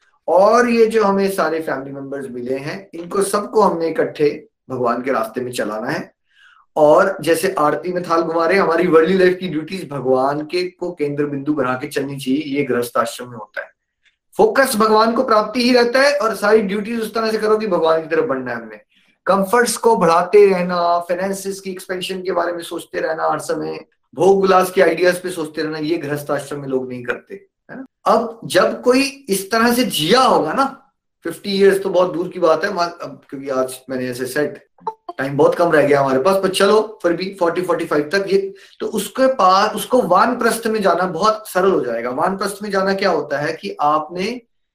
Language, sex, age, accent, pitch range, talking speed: Hindi, male, 30-49, native, 155-205 Hz, 200 wpm